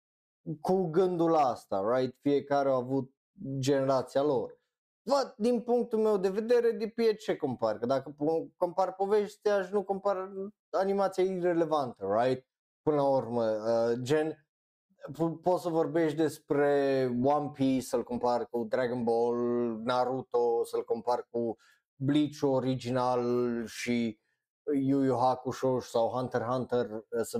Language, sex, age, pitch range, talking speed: Romanian, male, 20-39, 120-165 Hz, 125 wpm